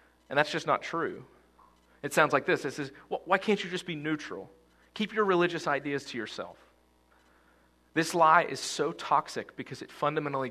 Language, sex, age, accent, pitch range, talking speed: English, male, 40-59, American, 110-165 Hz, 185 wpm